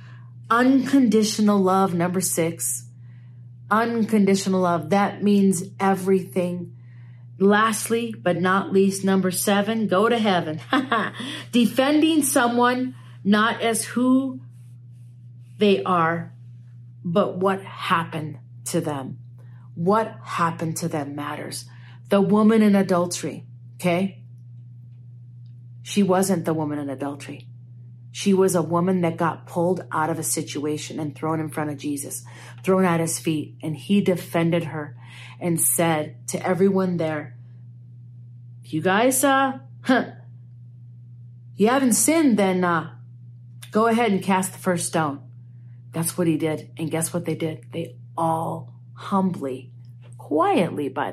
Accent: American